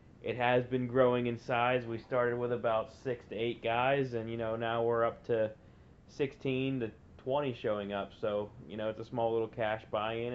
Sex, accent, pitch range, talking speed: male, American, 110-125 Hz, 205 wpm